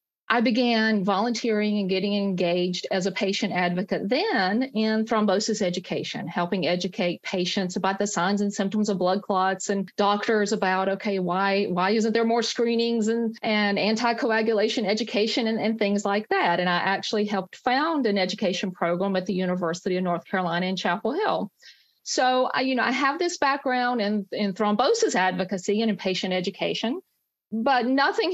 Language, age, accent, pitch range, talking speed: English, 50-69, American, 185-225 Hz, 165 wpm